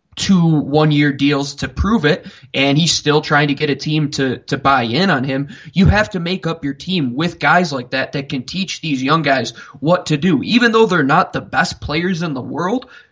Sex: male